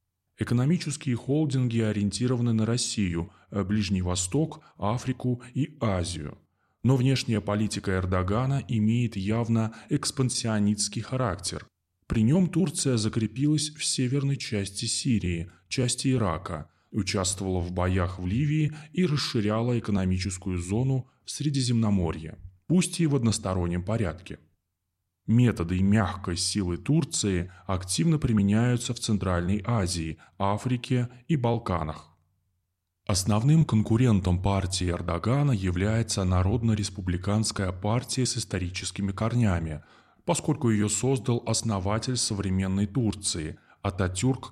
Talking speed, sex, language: 100 wpm, male, Russian